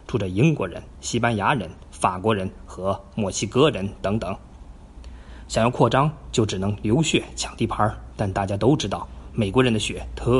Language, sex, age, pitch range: Chinese, male, 20-39, 100-125 Hz